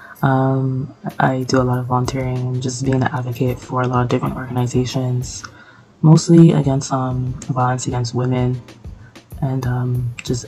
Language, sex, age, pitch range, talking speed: English, female, 20-39, 125-135 Hz, 150 wpm